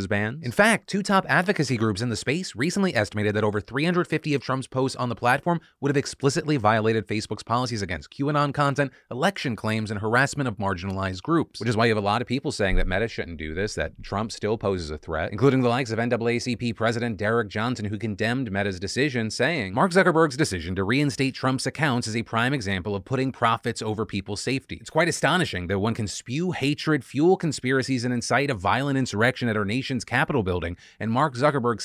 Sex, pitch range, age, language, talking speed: male, 105-140 Hz, 30-49, English, 210 wpm